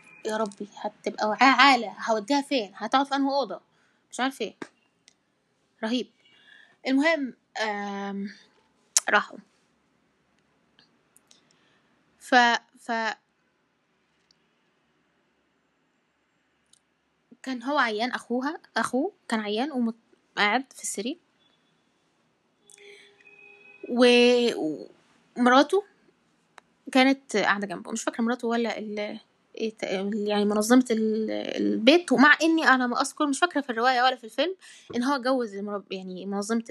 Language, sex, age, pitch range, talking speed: Arabic, female, 10-29, 210-270 Hz, 95 wpm